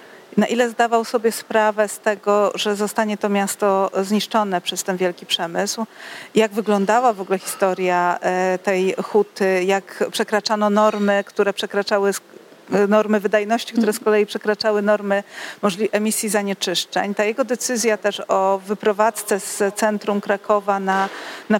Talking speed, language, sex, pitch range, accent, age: 135 wpm, Polish, female, 200-225 Hz, native, 50-69